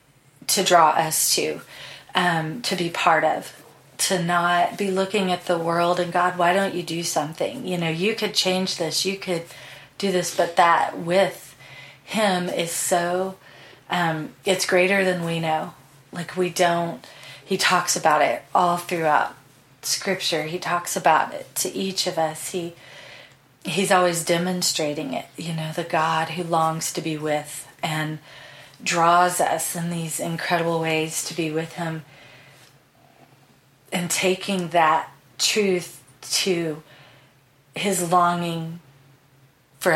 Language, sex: English, female